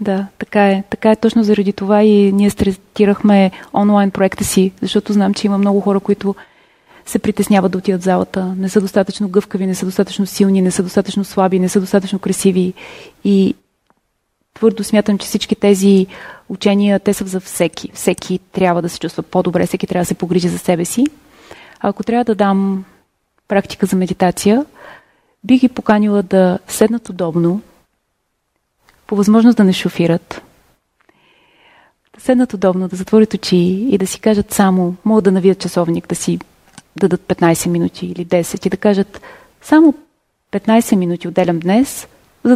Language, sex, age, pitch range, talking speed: Bulgarian, female, 20-39, 185-210 Hz, 165 wpm